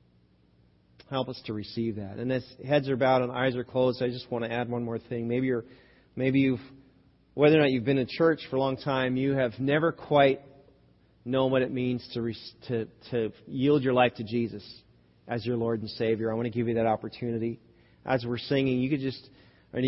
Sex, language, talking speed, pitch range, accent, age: male, English, 215 wpm, 120-135 Hz, American, 40-59